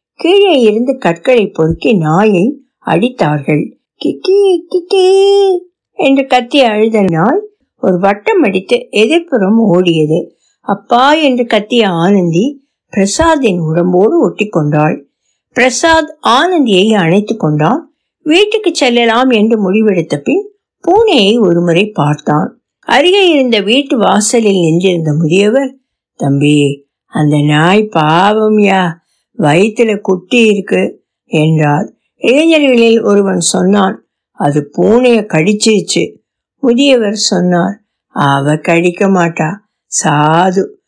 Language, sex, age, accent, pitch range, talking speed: Tamil, female, 60-79, native, 175-250 Hz, 80 wpm